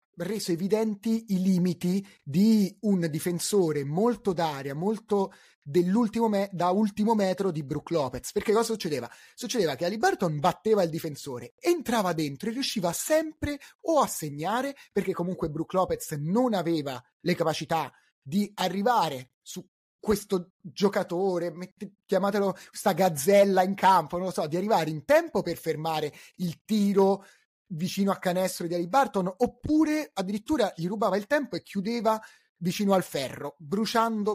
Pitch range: 170-230 Hz